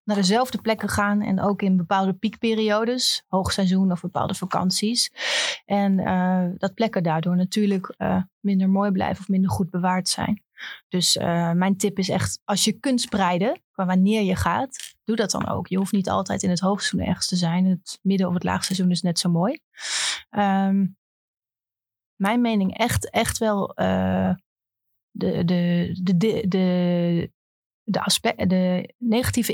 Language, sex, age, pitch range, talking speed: Dutch, female, 30-49, 180-205 Hz, 165 wpm